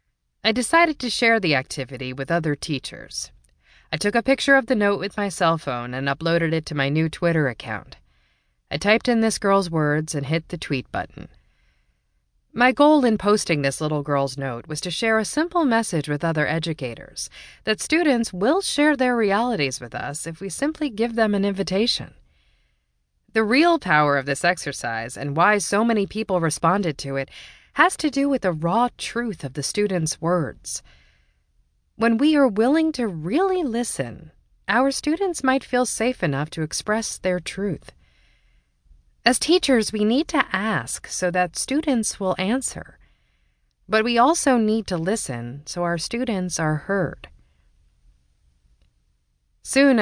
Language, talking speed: English, 165 wpm